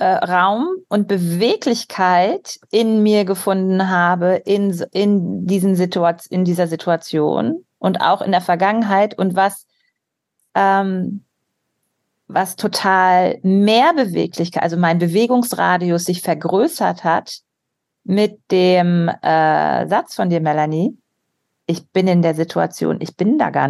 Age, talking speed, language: 40-59, 120 wpm, German